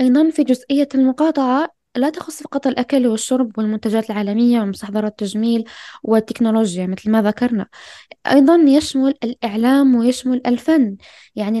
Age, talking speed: 10-29, 120 wpm